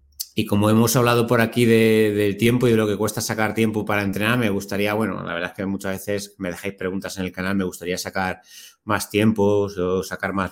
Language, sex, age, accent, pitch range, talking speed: Spanish, male, 30-49, Spanish, 95-115 Hz, 235 wpm